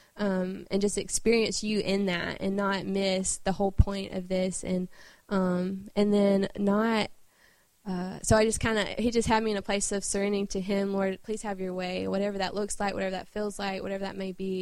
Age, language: 20-39, English